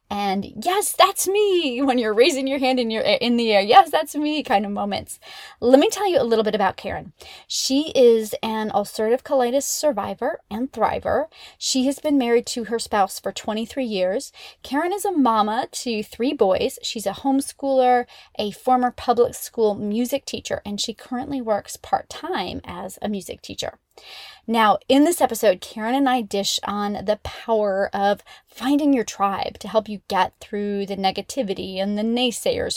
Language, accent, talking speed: English, American, 180 wpm